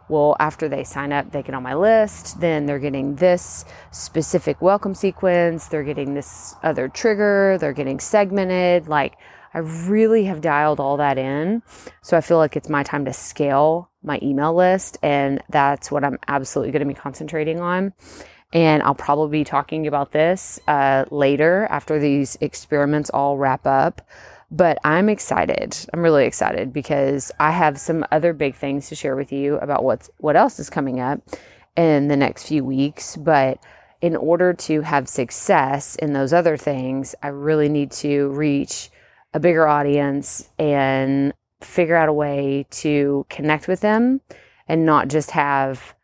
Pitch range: 140-160 Hz